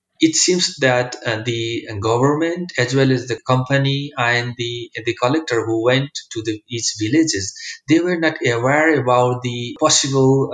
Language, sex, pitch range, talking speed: English, male, 120-160 Hz, 165 wpm